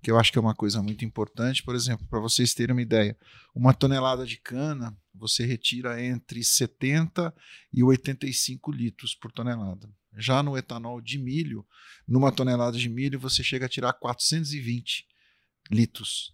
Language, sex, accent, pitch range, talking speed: Portuguese, male, Brazilian, 115-135 Hz, 160 wpm